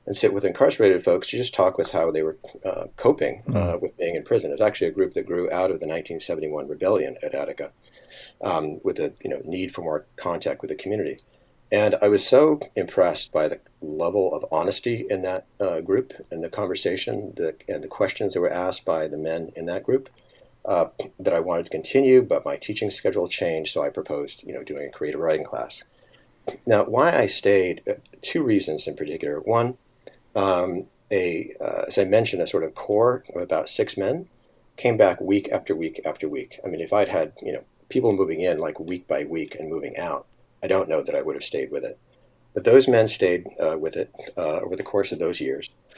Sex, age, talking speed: male, 50-69, 220 wpm